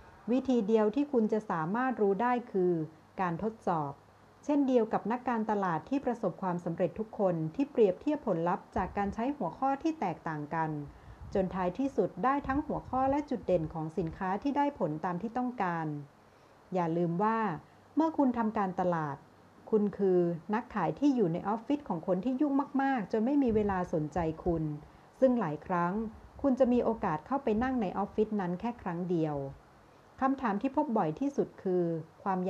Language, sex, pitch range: Thai, female, 175-245 Hz